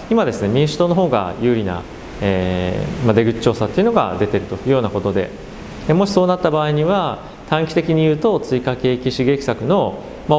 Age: 30-49